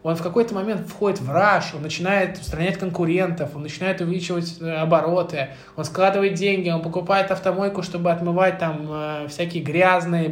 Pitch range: 145-190 Hz